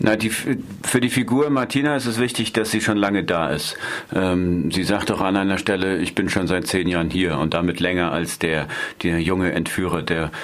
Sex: male